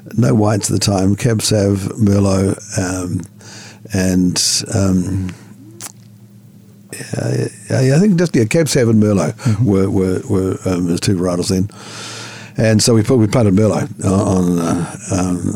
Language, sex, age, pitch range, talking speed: English, male, 50-69, 95-110 Hz, 150 wpm